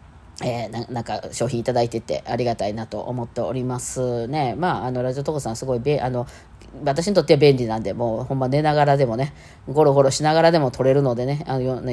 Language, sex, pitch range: Japanese, female, 120-155 Hz